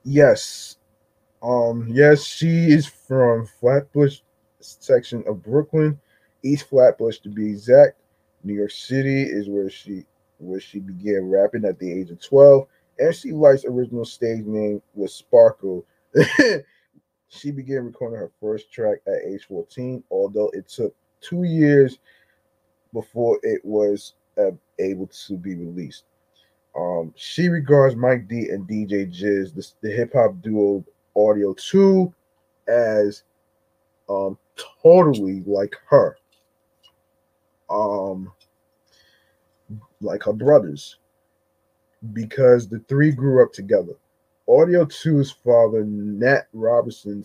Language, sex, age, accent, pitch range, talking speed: English, male, 20-39, American, 100-140 Hz, 120 wpm